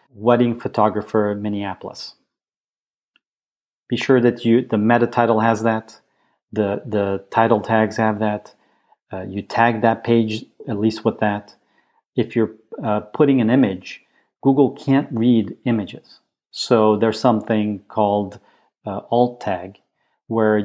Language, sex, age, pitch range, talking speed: English, male, 40-59, 105-120 Hz, 130 wpm